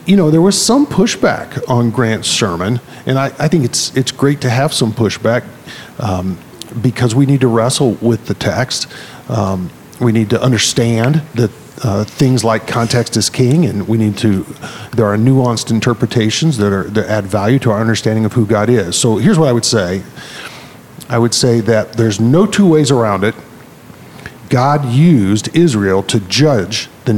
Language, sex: English, male